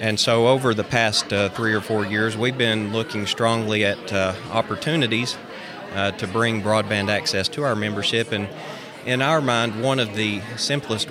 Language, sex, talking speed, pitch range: English, male, 180 wpm, 100-115 Hz